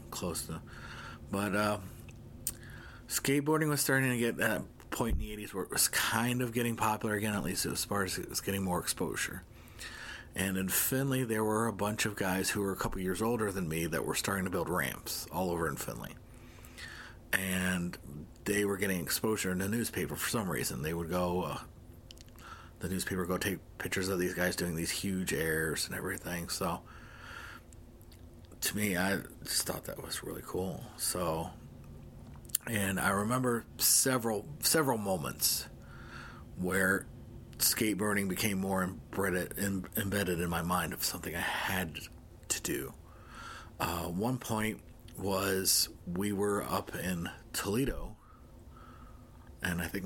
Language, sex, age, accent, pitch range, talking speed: English, male, 40-59, American, 90-110 Hz, 160 wpm